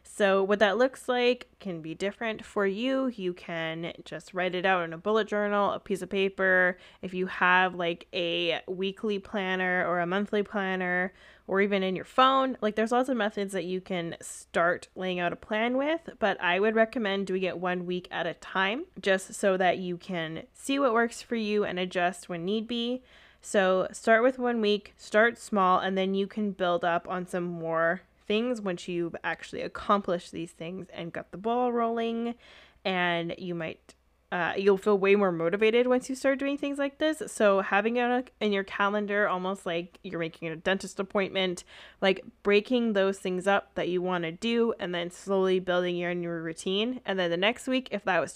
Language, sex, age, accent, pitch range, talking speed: English, female, 20-39, American, 180-220 Hz, 200 wpm